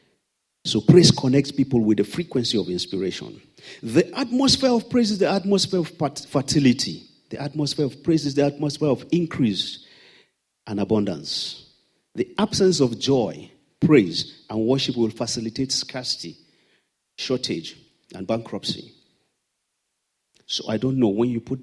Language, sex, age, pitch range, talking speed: English, male, 50-69, 110-145 Hz, 135 wpm